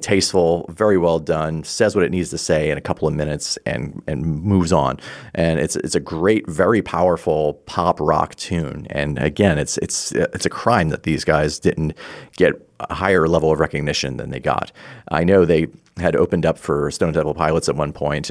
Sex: male